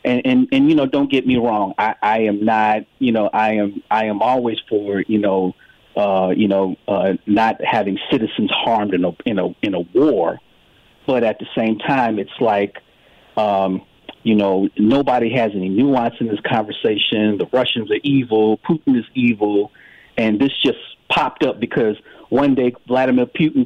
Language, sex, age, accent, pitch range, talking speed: English, male, 40-59, American, 100-125 Hz, 185 wpm